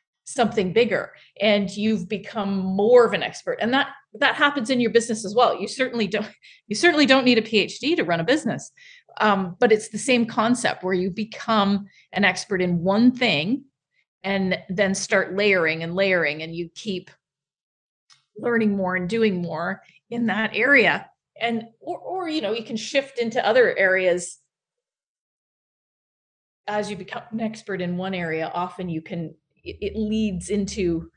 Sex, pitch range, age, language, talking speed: female, 190-245 Hz, 30-49, English, 170 wpm